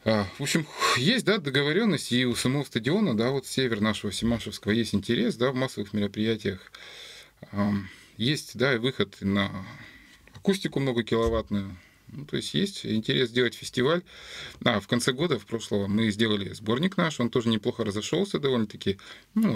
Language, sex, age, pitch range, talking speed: Russian, male, 20-39, 100-130 Hz, 155 wpm